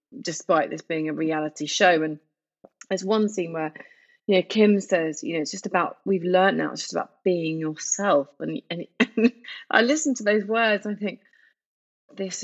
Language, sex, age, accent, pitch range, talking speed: English, female, 30-49, British, 150-210 Hz, 190 wpm